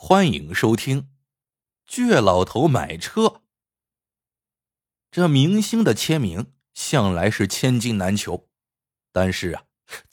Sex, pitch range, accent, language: male, 110-155 Hz, native, Chinese